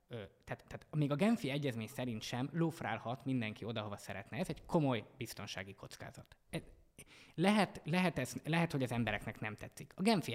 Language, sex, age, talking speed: Hungarian, male, 20-39, 155 wpm